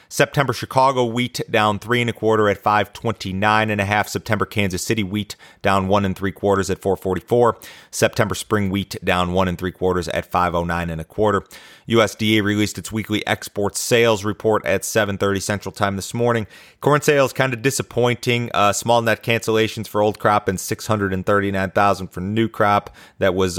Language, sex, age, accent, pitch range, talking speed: English, male, 30-49, American, 95-110 Hz, 185 wpm